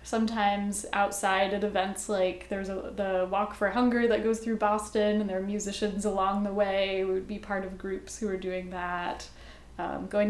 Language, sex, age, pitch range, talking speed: English, female, 10-29, 185-215 Hz, 200 wpm